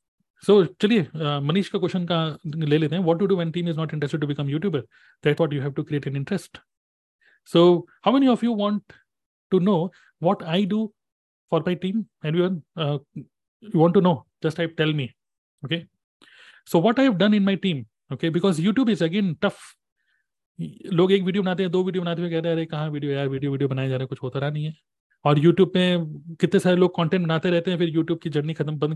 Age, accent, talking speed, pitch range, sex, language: 30-49, native, 170 wpm, 150-185 Hz, male, Hindi